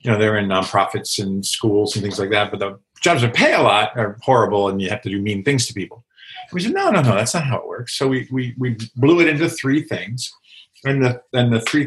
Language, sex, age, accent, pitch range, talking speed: English, male, 50-69, American, 110-140 Hz, 275 wpm